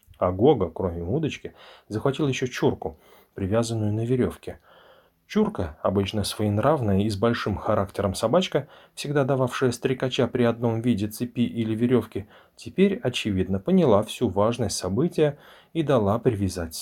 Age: 30-49